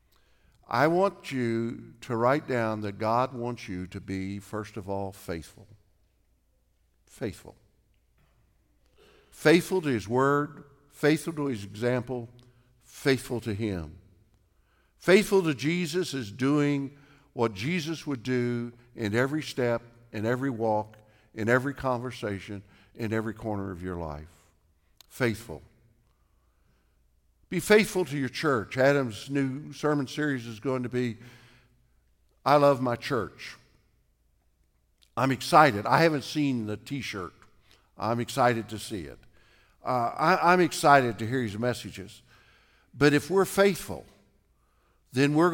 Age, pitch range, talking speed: 60-79, 100-140 Hz, 125 wpm